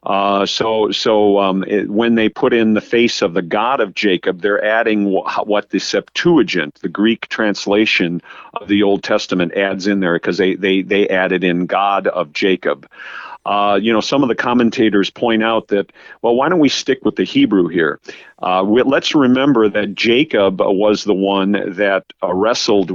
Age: 50-69